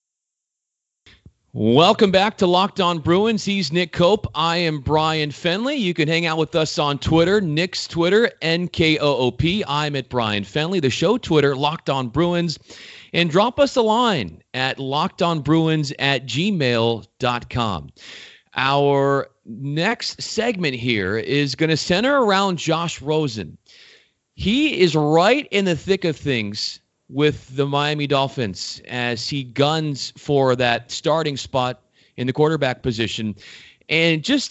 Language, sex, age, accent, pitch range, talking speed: English, male, 40-59, American, 125-175 Hz, 145 wpm